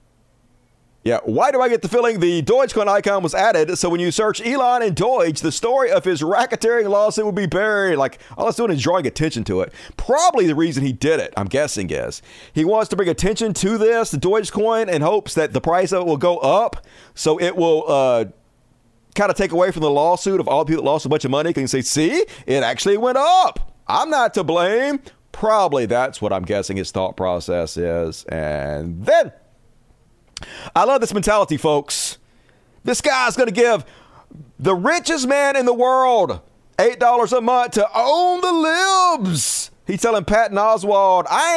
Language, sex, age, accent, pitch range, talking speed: English, male, 40-59, American, 155-245 Hz, 205 wpm